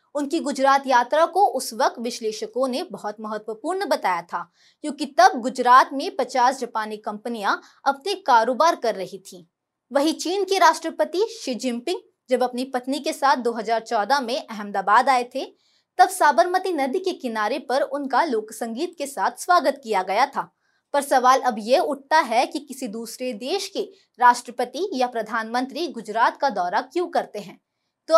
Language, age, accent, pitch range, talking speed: Hindi, 20-39, native, 230-330 Hz, 160 wpm